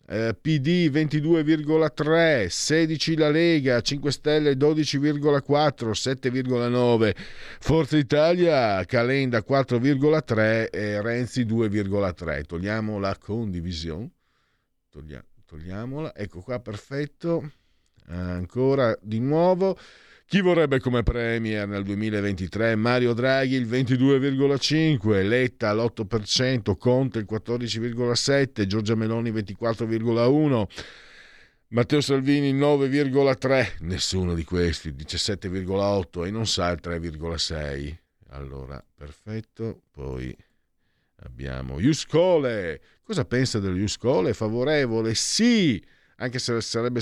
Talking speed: 95 wpm